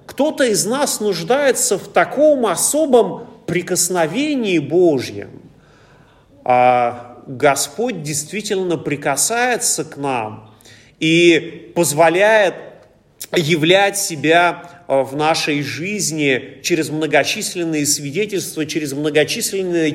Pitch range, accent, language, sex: 155-225 Hz, native, Russian, male